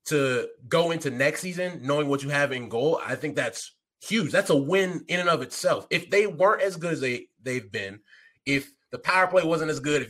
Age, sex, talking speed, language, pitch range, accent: 20-39, male, 230 wpm, English, 120-150 Hz, American